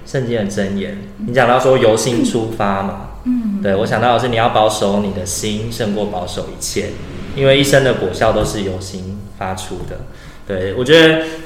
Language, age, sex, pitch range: Chinese, 20-39, male, 100-140 Hz